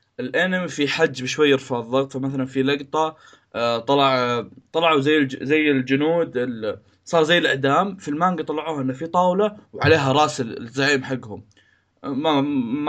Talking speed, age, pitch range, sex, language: 135 wpm, 20-39, 130-180 Hz, male, Arabic